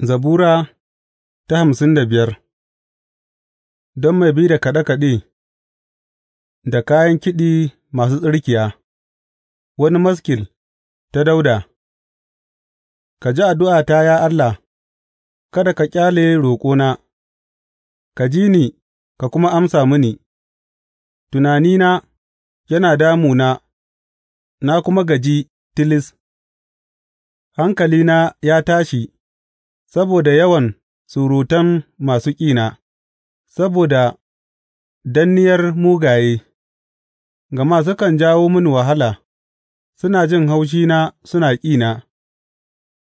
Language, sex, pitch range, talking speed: English, male, 110-165 Hz, 70 wpm